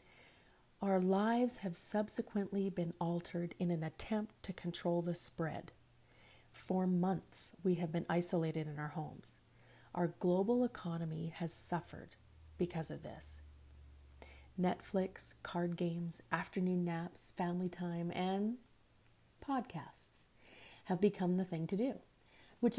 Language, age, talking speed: English, 30-49, 120 wpm